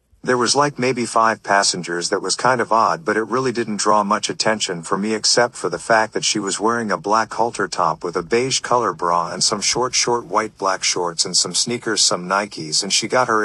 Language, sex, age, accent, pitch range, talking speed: English, male, 50-69, American, 95-115 Hz, 235 wpm